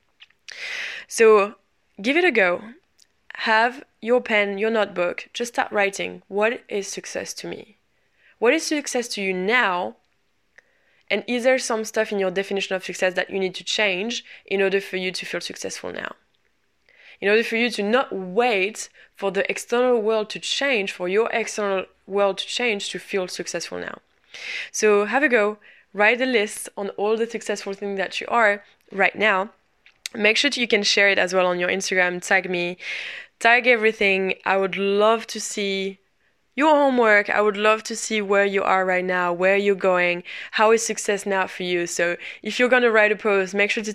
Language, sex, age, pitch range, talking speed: English, female, 20-39, 185-220 Hz, 190 wpm